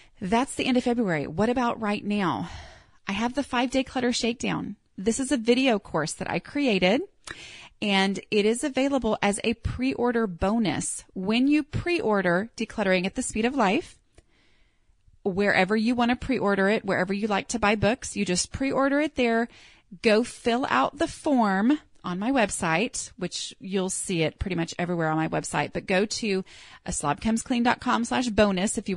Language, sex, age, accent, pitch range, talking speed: English, female, 30-49, American, 190-245 Hz, 180 wpm